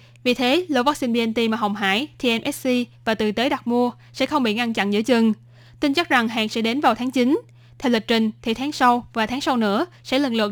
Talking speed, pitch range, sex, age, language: 245 wpm, 210-250 Hz, female, 10-29, Vietnamese